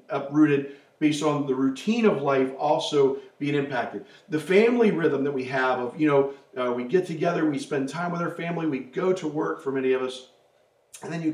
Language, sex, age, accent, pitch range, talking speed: English, male, 40-59, American, 145-190 Hz, 210 wpm